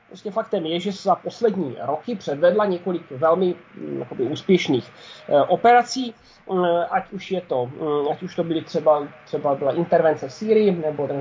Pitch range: 180-220 Hz